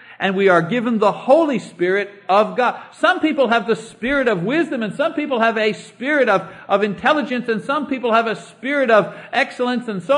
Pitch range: 205-270 Hz